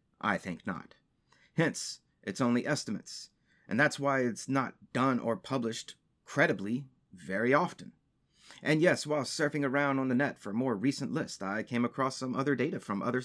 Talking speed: 175 wpm